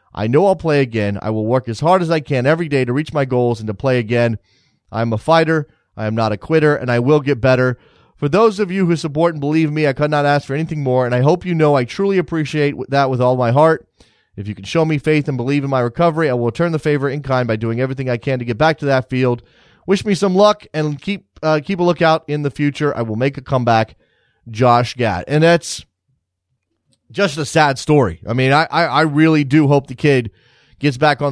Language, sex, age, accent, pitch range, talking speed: English, male, 30-49, American, 125-160 Hz, 255 wpm